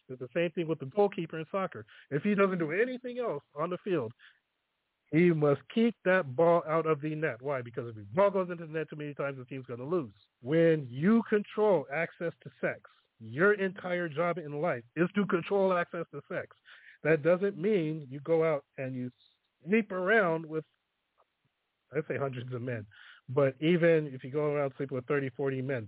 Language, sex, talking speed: English, male, 205 wpm